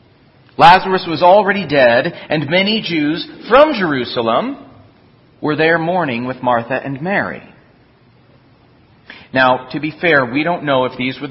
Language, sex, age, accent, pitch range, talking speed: English, male, 40-59, American, 120-160 Hz, 140 wpm